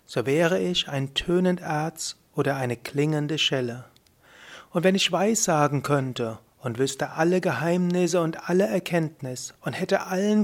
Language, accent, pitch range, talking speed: German, German, 135-175 Hz, 150 wpm